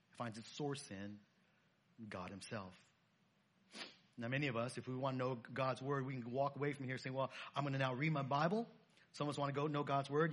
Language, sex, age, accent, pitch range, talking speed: English, male, 40-59, American, 120-175 Hz, 245 wpm